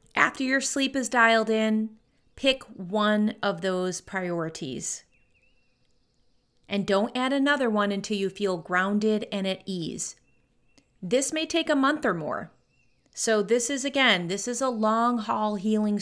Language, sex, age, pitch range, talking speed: English, female, 30-49, 190-225 Hz, 145 wpm